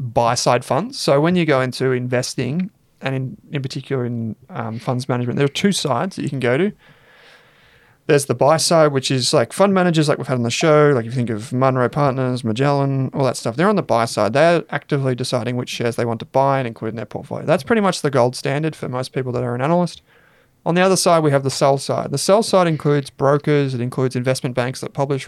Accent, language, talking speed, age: Australian, English, 245 wpm, 30-49